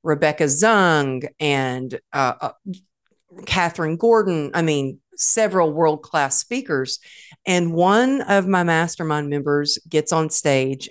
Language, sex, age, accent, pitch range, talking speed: English, female, 40-59, American, 150-210 Hz, 115 wpm